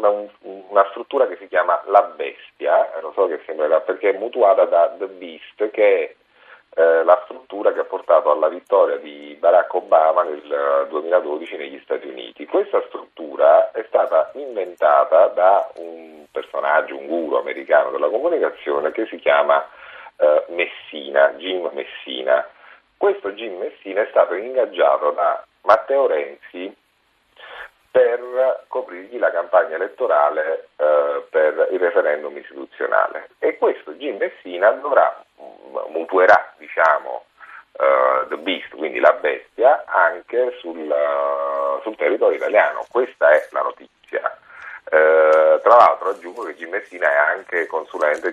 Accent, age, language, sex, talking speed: native, 40-59, Italian, male, 130 wpm